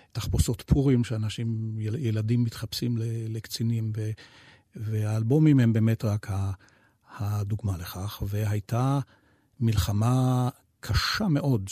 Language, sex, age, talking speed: Hebrew, male, 50-69, 95 wpm